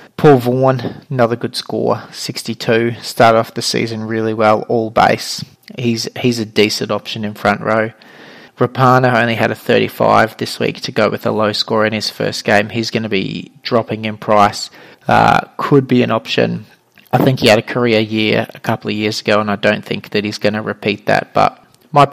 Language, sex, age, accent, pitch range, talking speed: English, male, 20-39, Australian, 110-125 Hz, 205 wpm